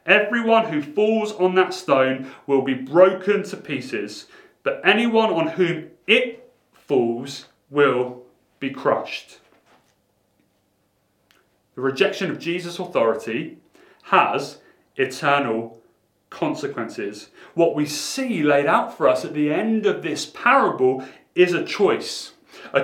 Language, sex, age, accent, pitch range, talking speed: English, male, 30-49, British, 150-210 Hz, 120 wpm